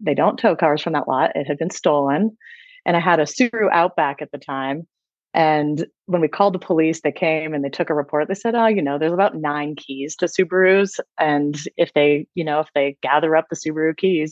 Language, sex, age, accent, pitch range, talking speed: English, female, 30-49, American, 150-195 Hz, 235 wpm